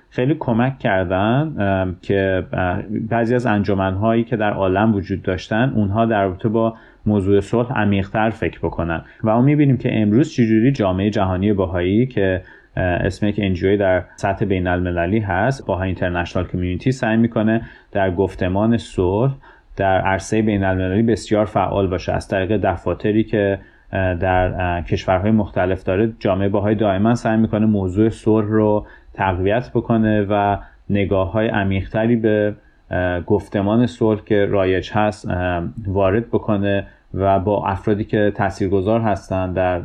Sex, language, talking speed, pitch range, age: male, Persian, 135 wpm, 95-110 Hz, 30-49